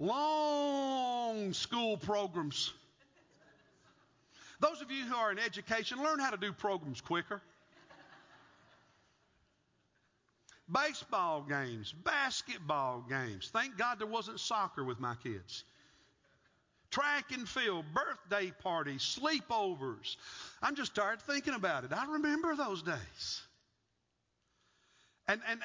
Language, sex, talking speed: English, male, 110 wpm